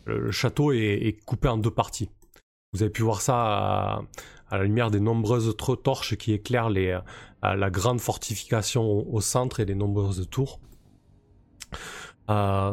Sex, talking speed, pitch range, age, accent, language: male, 165 wpm, 100-125 Hz, 20-39, French, French